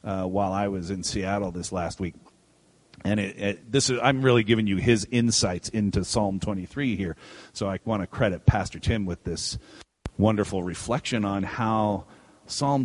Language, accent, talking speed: English, American, 185 wpm